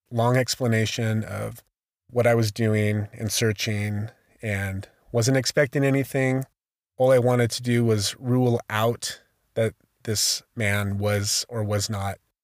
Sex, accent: male, American